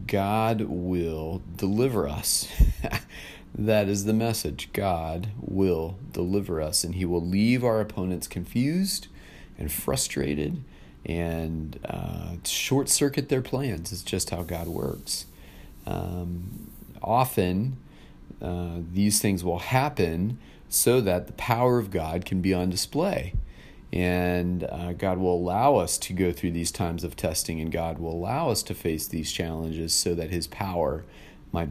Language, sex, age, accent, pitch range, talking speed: English, male, 40-59, American, 85-100 Hz, 140 wpm